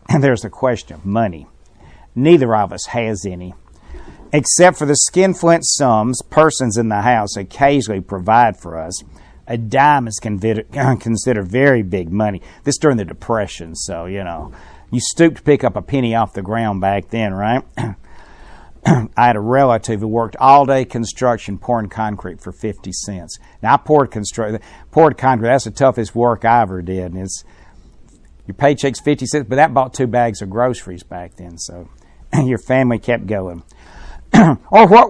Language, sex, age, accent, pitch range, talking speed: English, male, 60-79, American, 100-140 Hz, 175 wpm